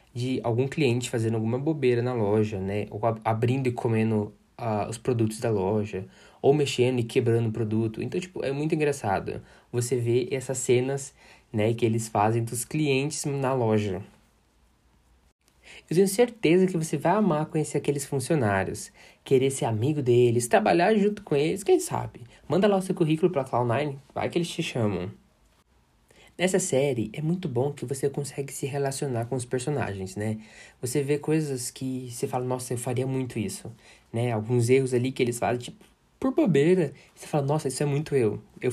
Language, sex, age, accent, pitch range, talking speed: Portuguese, male, 20-39, Brazilian, 115-155 Hz, 180 wpm